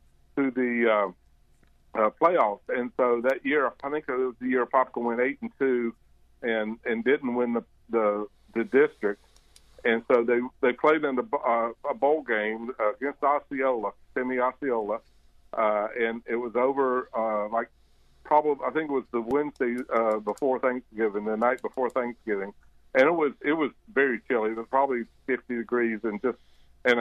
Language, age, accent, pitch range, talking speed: English, 60-79, American, 105-125 Hz, 175 wpm